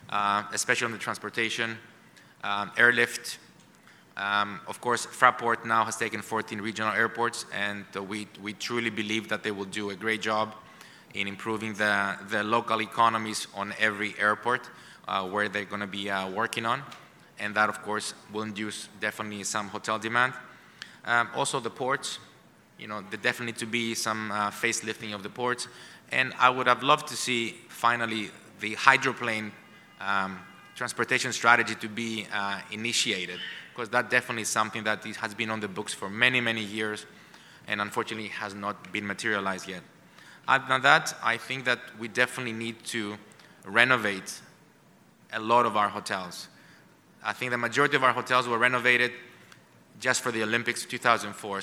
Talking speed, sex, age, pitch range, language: 165 wpm, male, 20-39, 105-120 Hz, English